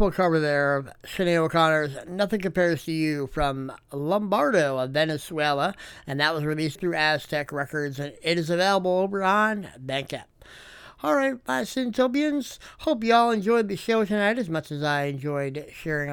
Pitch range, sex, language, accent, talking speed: 150-210 Hz, male, English, American, 165 wpm